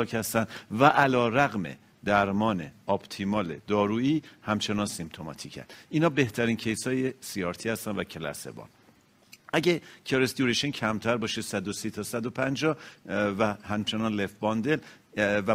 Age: 50-69